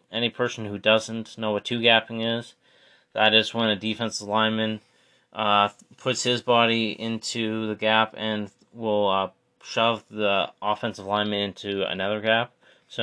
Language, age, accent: English, 30-49, American